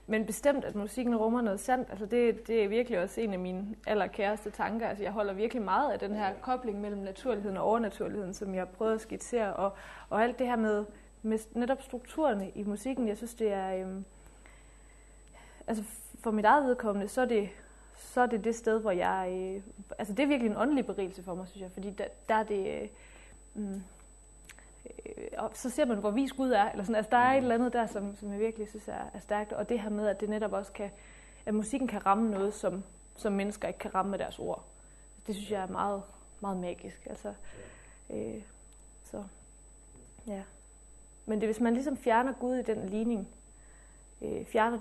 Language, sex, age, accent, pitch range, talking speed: Danish, female, 20-39, native, 200-235 Hz, 210 wpm